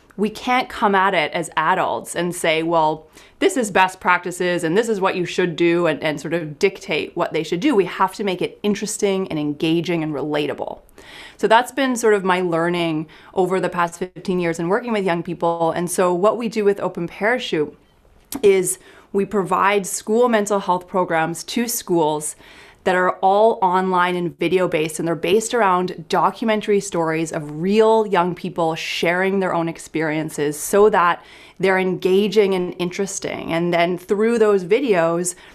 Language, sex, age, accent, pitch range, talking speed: English, female, 30-49, American, 170-205 Hz, 180 wpm